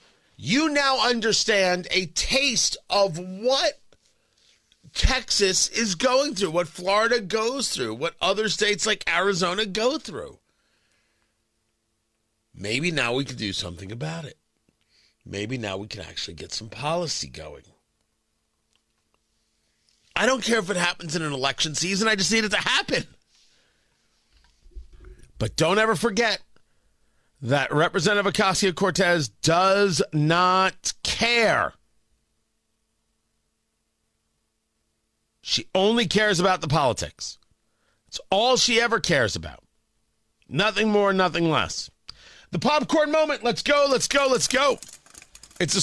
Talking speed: 120 wpm